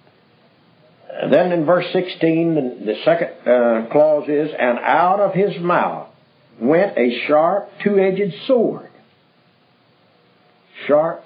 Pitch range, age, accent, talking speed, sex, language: 120-175 Hz, 60-79, American, 105 wpm, male, English